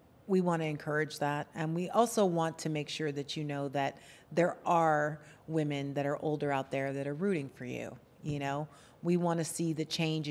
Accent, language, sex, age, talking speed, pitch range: American, English, female, 40-59, 215 wpm, 140-165 Hz